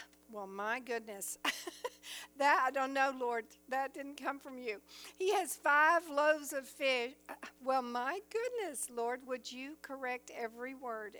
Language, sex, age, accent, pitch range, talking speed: English, female, 60-79, American, 220-285 Hz, 150 wpm